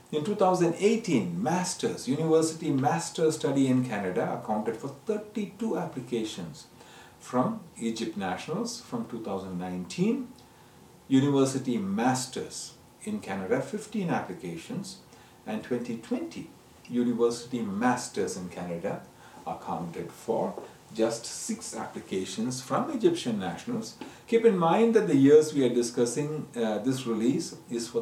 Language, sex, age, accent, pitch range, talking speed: English, male, 50-69, Indian, 120-190 Hz, 110 wpm